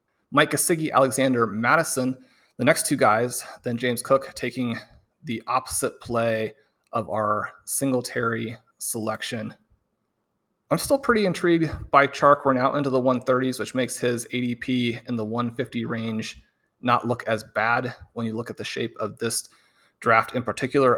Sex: male